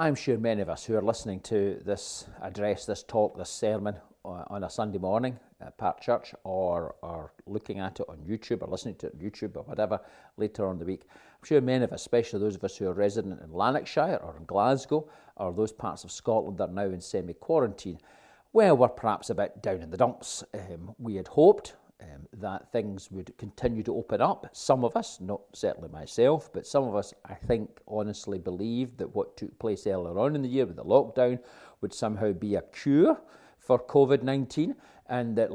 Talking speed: 215 wpm